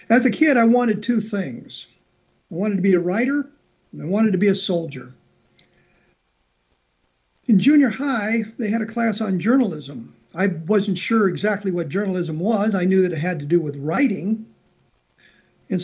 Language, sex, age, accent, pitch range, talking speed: English, male, 50-69, American, 170-215 Hz, 175 wpm